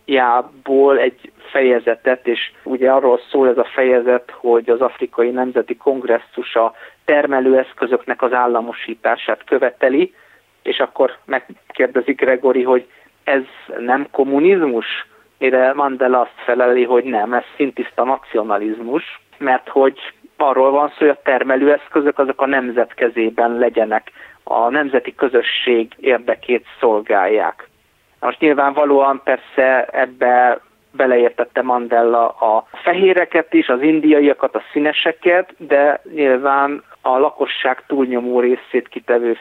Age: 30-49